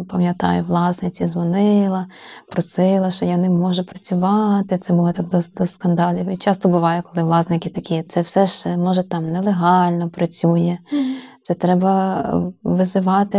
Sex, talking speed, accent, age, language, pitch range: female, 140 wpm, native, 20-39, Ukrainian, 175-195 Hz